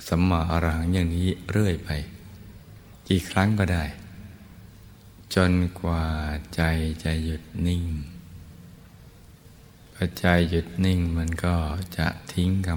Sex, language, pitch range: male, Thai, 80-90 Hz